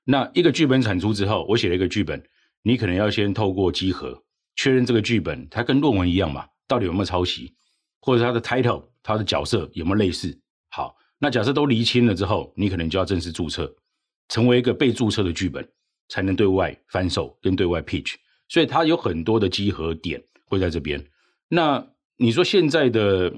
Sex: male